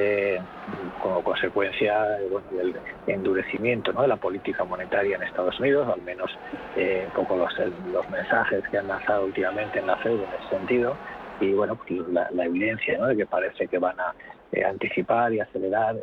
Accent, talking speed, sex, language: Spanish, 195 wpm, male, Spanish